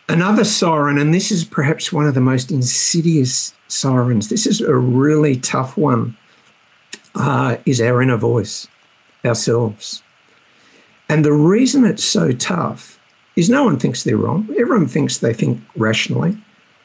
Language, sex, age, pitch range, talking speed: English, male, 60-79, 120-160 Hz, 145 wpm